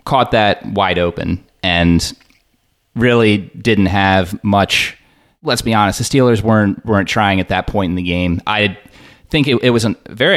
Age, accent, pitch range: 30-49, American, 95-120 Hz